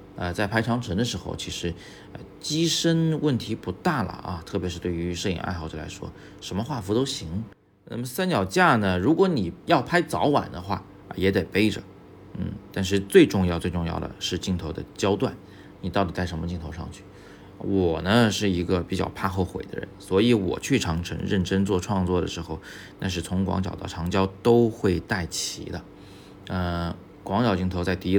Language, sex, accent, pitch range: Chinese, male, native, 90-100 Hz